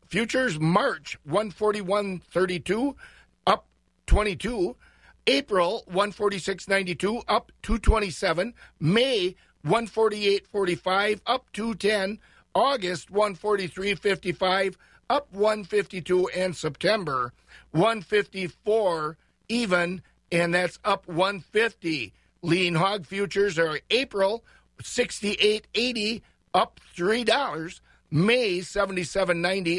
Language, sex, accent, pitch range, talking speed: English, male, American, 175-215 Hz, 75 wpm